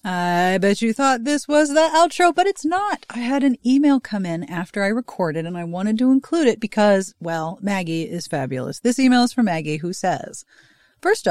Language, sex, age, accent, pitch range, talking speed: English, female, 40-59, American, 175-255 Hz, 205 wpm